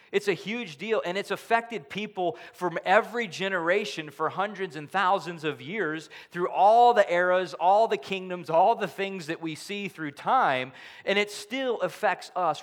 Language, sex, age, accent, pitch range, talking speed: English, male, 30-49, American, 145-190 Hz, 175 wpm